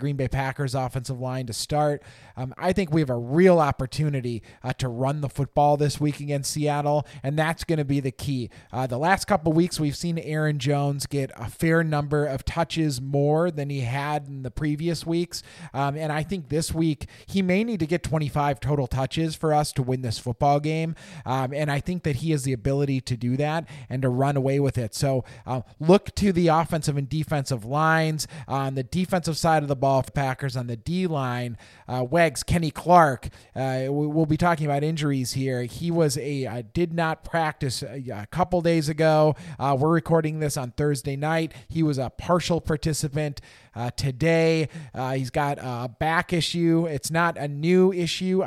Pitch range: 135-160 Hz